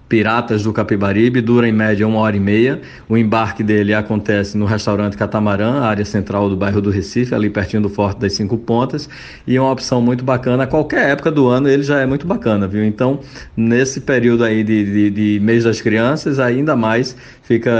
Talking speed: 200 wpm